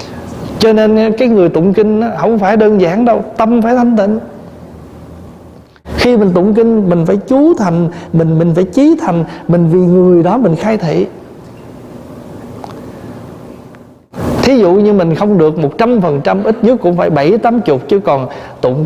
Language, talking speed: Vietnamese, 165 wpm